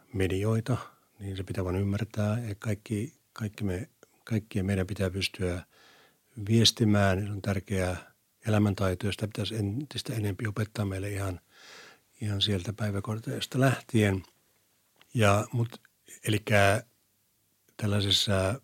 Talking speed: 105 wpm